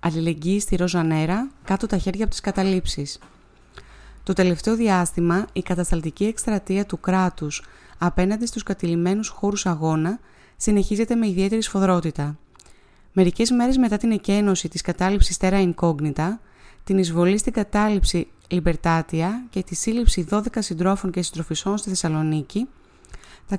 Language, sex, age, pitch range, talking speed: Greek, female, 20-39, 180-210 Hz, 125 wpm